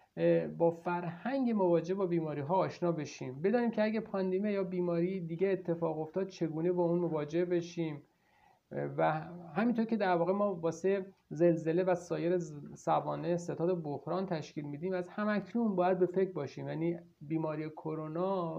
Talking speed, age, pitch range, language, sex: 145 wpm, 50-69, 170-205 Hz, Persian, male